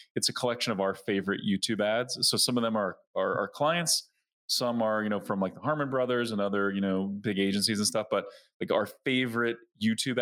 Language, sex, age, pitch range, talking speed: English, male, 20-39, 100-140 Hz, 215 wpm